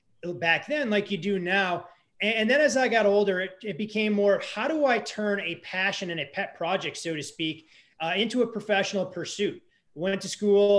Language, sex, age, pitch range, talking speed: English, male, 20-39, 165-200 Hz, 205 wpm